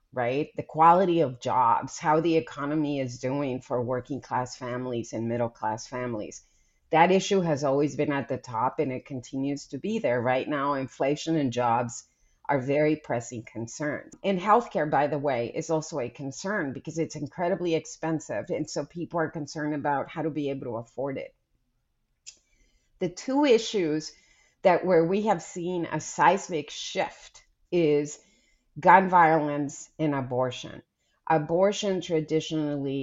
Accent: American